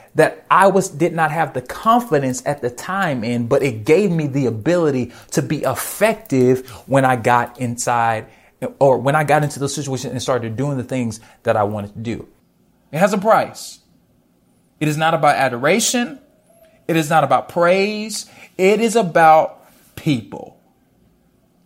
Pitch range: 135-200 Hz